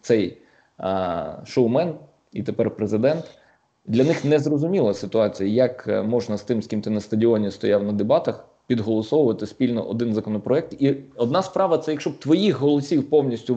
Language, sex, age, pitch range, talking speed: Ukrainian, male, 20-39, 115-150 Hz, 155 wpm